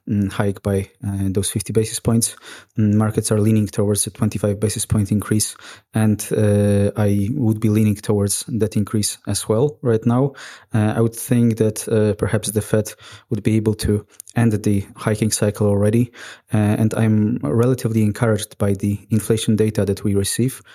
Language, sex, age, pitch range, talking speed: English, male, 20-39, 105-120 Hz, 170 wpm